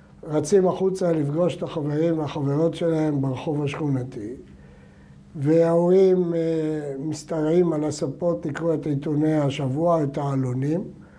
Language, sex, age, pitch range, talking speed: Hebrew, male, 60-79, 150-195 Hz, 100 wpm